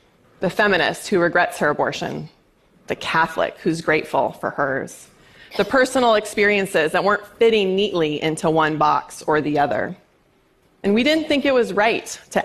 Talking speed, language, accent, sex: 160 wpm, English, American, female